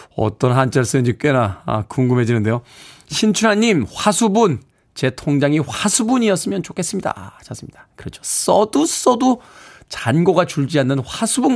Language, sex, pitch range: Korean, male, 115-170 Hz